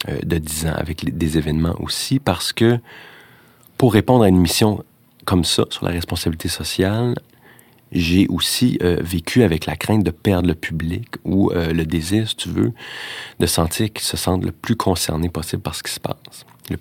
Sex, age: male, 30-49